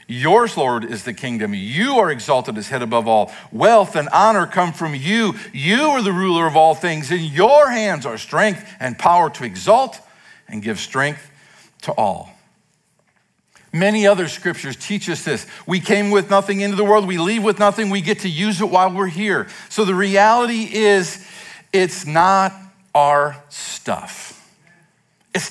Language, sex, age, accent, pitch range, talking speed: English, male, 50-69, American, 150-205 Hz, 170 wpm